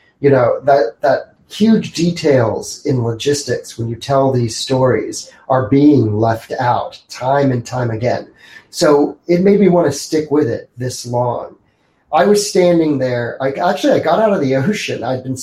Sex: male